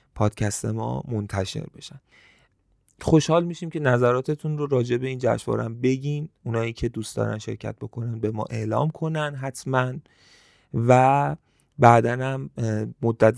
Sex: male